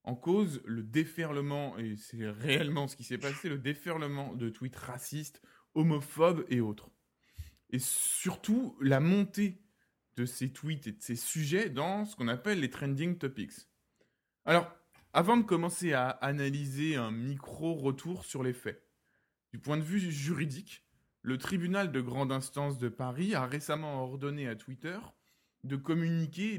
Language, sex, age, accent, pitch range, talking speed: French, male, 20-39, French, 130-170 Hz, 150 wpm